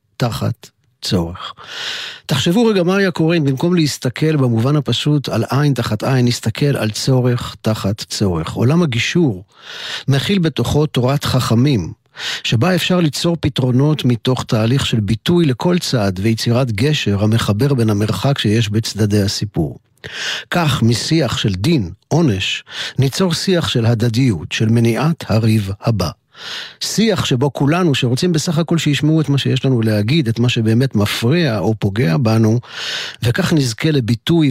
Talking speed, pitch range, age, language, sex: 135 wpm, 110-145 Hz, 50-69, Hebrew, male